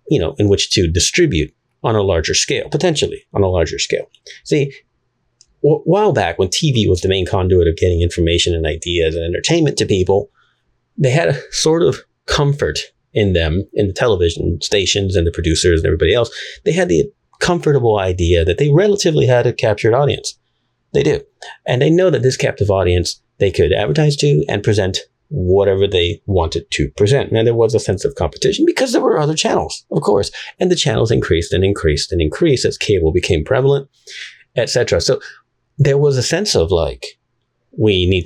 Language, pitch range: English, 90-145 Hz